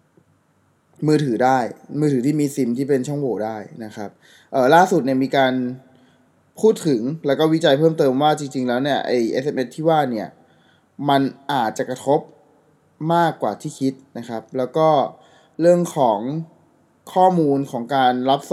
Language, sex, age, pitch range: Thai, male, 20-39, 125-155 Hz